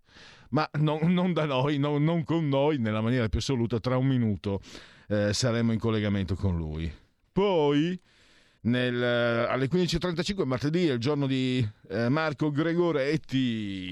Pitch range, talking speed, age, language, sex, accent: 95-130 Hz, 145 wpm, 40-59, Italian, male, native